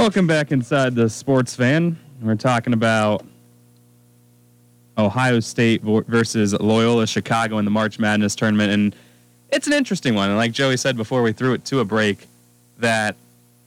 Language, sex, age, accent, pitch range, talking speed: English, male, 20-39, American, 95-135 Hz, 160 wpm